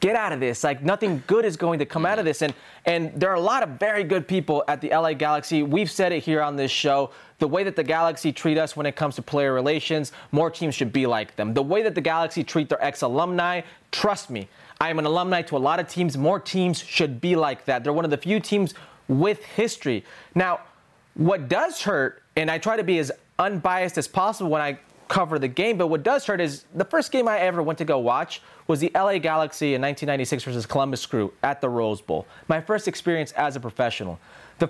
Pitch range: 140-180 Hz